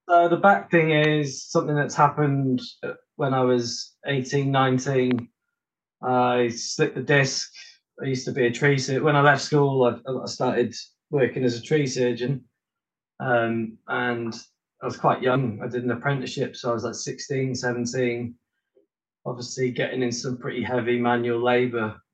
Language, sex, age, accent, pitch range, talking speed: English, male, 20-39, British, 120-135 Hz, 165 wpm